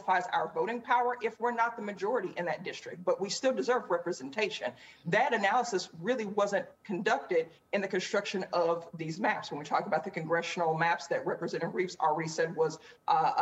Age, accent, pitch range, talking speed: 40-59, American, 180-230 Hz, 185 wpm